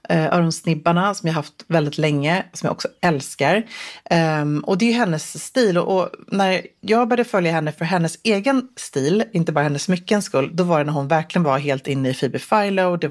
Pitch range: 150-195 Hz